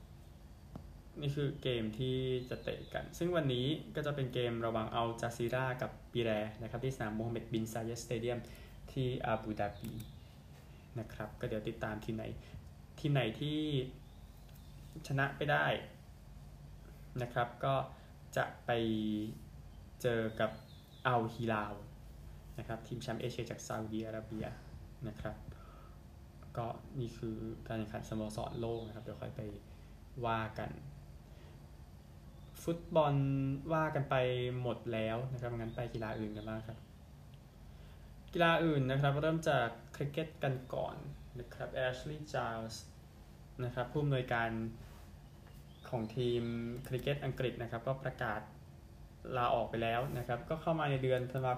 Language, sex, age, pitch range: Thai, male, 20-39, 110-130 Hz